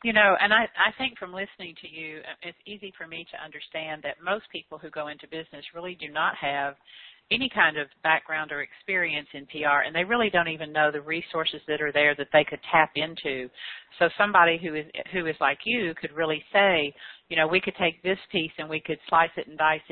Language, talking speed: English, 230 wpm